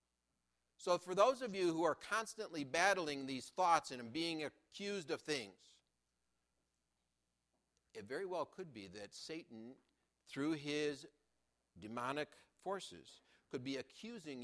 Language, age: English, 60-79